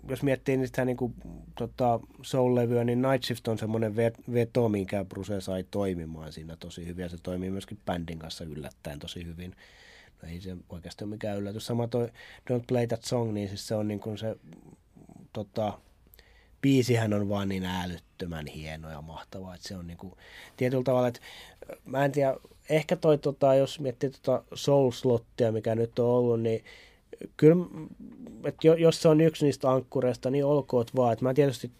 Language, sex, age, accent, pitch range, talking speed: Finnish, male, 30-49, native, 105-130 Hz, 175 wpm